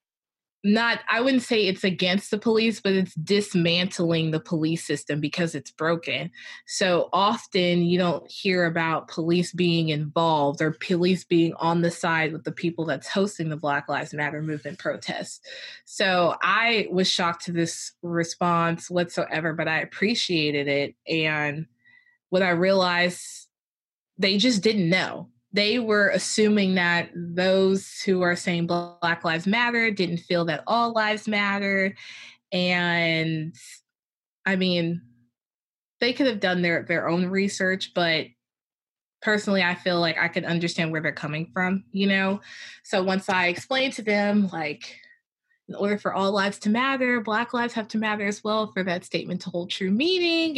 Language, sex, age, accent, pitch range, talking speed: English, female, 20-39, American, 170-205 Hz, 160 wpm